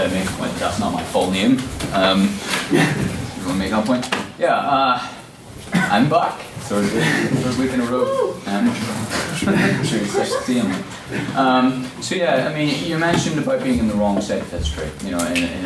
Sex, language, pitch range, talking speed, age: male, English, 90-145 Hz, 150 wpm, 30-49